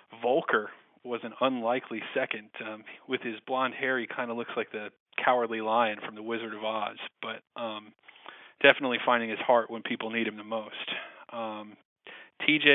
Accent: American